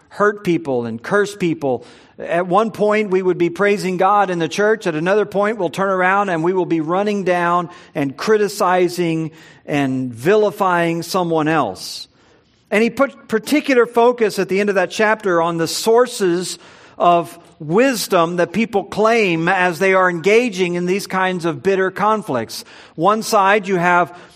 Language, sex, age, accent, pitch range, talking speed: English, male, 50-69, American, 170-210 Hz, 165 wpm